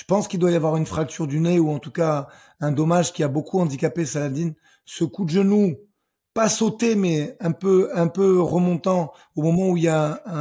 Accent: French